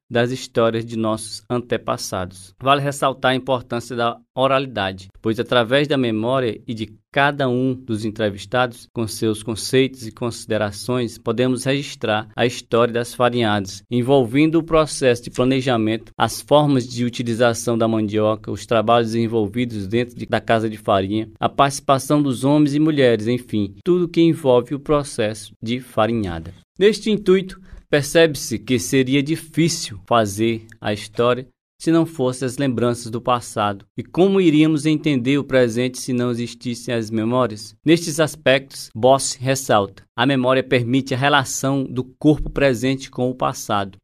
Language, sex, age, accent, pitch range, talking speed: Portuguese, male, 20-39, Brazilian, 115-140 Hz, 145 wpm